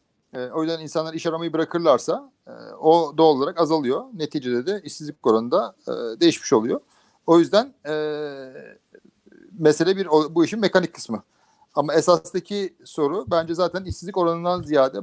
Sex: male